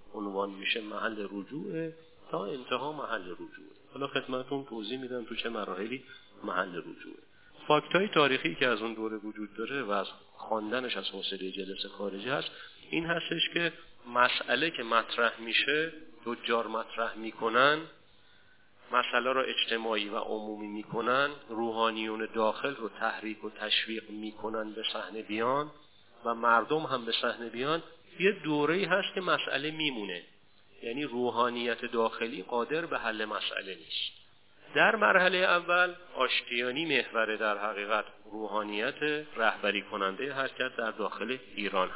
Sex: male